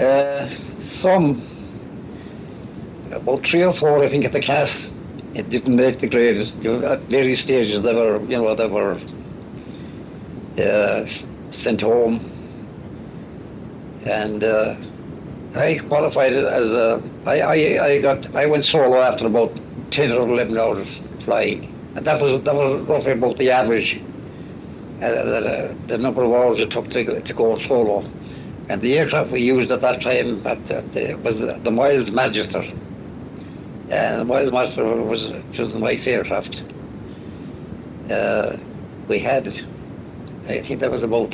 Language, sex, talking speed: English, male, 140 wpm